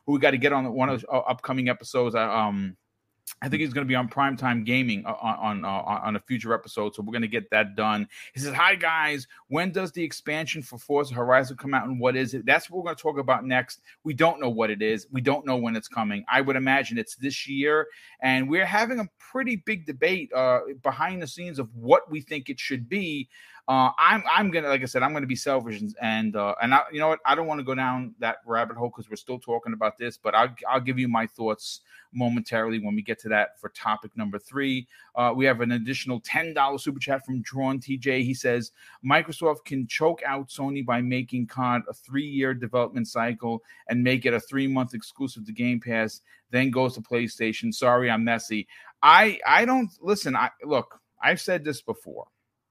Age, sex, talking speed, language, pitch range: 30-49, male, 225 wpm, English, 115-140 Hz